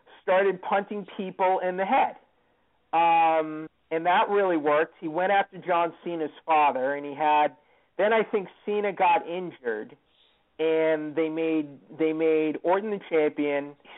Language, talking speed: English, 150 wpm